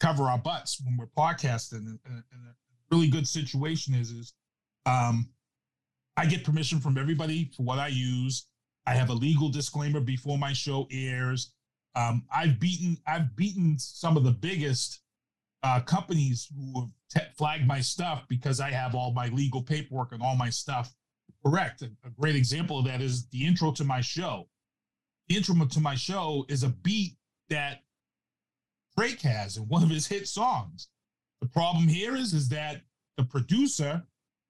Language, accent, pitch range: English, American, 125-160 Hz